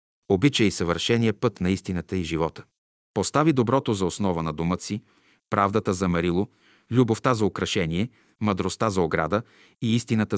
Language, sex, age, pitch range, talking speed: Bulgarian, male, 40-59, 90-115 Hz, 150 wpm